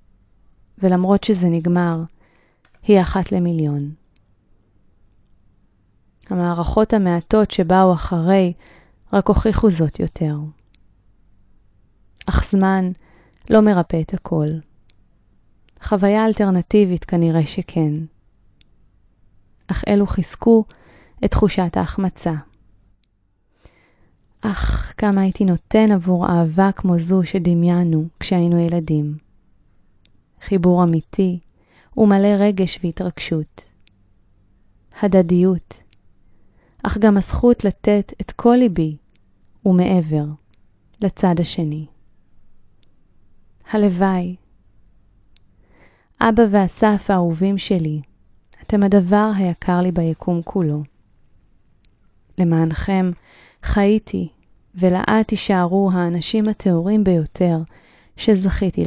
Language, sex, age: Hebrew, female, 20-39